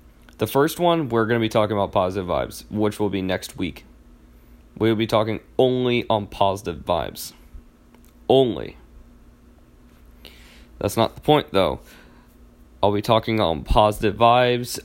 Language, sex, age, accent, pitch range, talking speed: English, male, 20-39, American, 75-115 Hz, 145 wpm